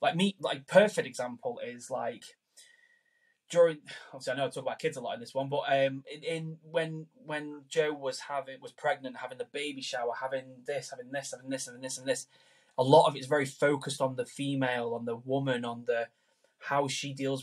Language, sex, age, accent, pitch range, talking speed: English, male, 10-29, British, 130-155 Hz, 215 wpm